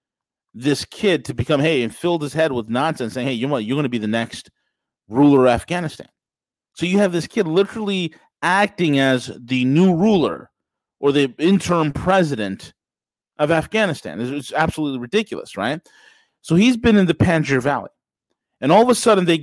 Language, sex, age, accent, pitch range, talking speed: English, male, 30-49, American, 125-165 Hz, 185 wpm